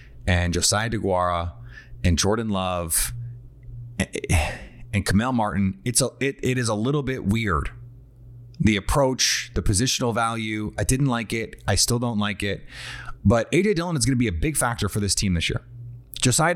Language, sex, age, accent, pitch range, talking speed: English, male, 30-49, American, 120-140 Hz, 180 wpm